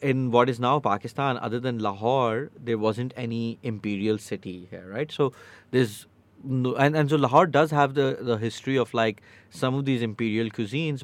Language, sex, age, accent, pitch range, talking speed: English, male, 30-49, Indian, 100-130 Hz, 185 wpm